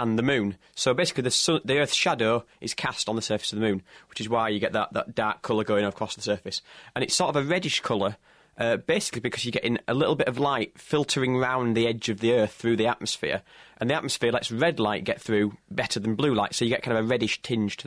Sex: male